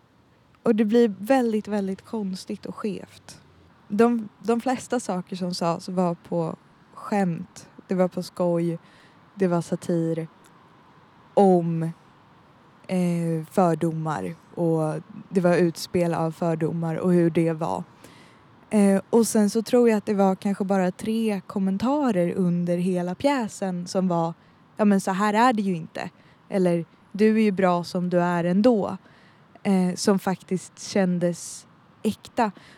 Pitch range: 175-210 Hz